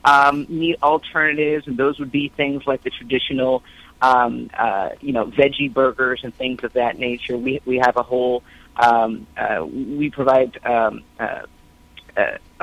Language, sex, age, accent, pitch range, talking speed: English, female, 30-49, American, 125-150 Hz, 160 wpm